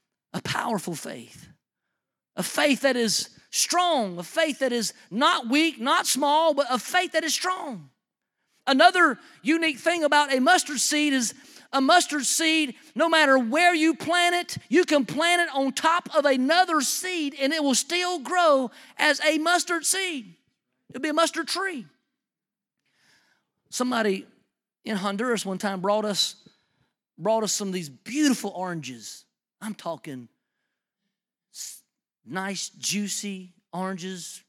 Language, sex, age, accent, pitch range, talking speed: English, male, 40-59, American, 200-310 Hz, 145 wpm